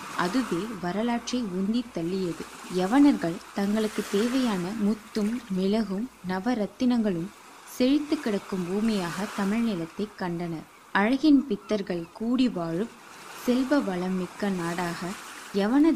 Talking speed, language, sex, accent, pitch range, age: 85 wpm, Tamil, female, native, 185-240 Hz, 20-39